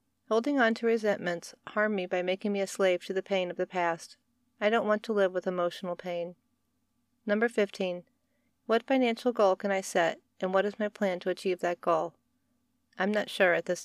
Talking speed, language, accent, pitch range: 205 wpm, English, American, 185-225 Hz